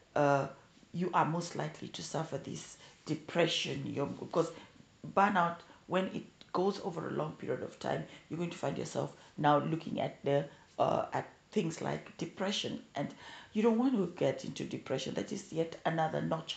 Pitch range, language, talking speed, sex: 155-190 Hz, English, 175 wpm, female